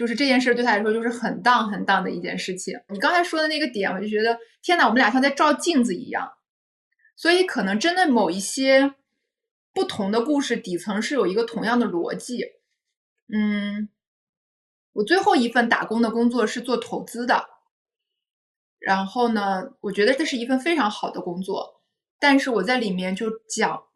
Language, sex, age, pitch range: Chinese, female, 20-39, 200-275 Hz